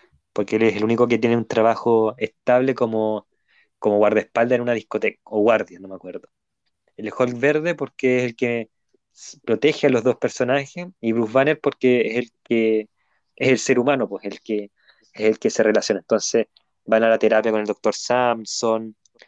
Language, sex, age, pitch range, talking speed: Spanish, male, 20-39, 115-140 Hz, 190 wpm